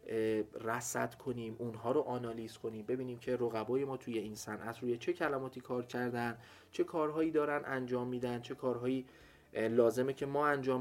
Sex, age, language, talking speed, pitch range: male, 30-49, Persian, 160 wpm, 105-140 Hz